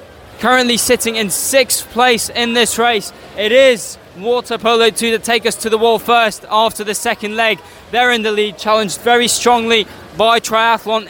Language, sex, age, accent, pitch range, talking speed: English, male, 10-29, British, 215-245 Hz, 180 wpm